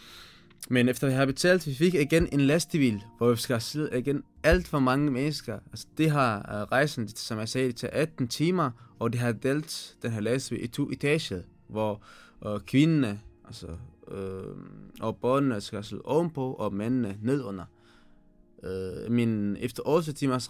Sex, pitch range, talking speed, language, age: male, 110-140 Hz, 170 wpm, Danish, 20-39